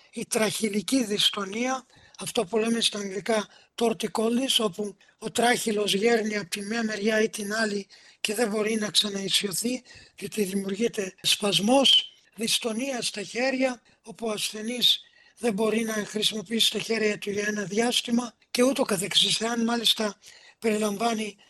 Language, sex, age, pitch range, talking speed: Greek, male, 50-69, 205-230 Hz, 140 wpm